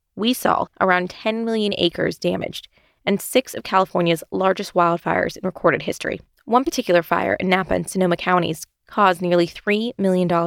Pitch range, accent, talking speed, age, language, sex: 175-230 Hz, American, 160 wpm, 20-39, English, female